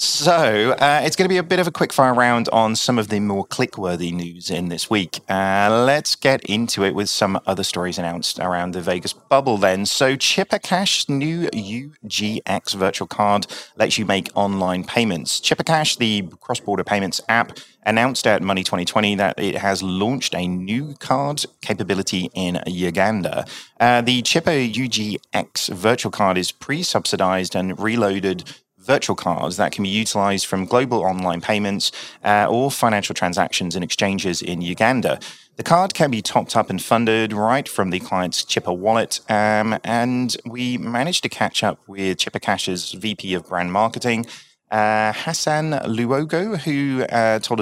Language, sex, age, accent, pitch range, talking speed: English, male, 30-49, British, 95-130 Hz, 165 wpm